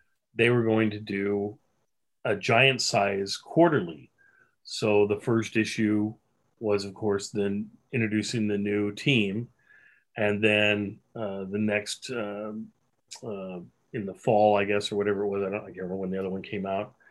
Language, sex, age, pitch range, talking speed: English, male, 40-59, 105-130 Hz, 160 wpm